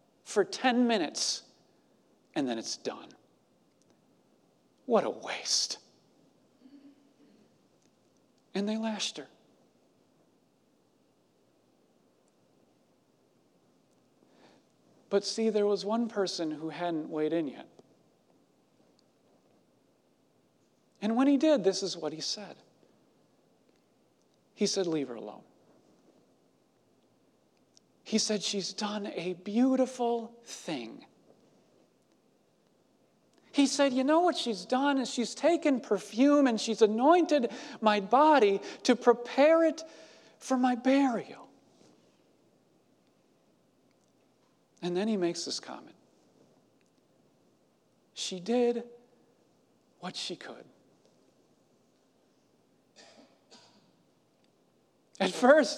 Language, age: English, 40-59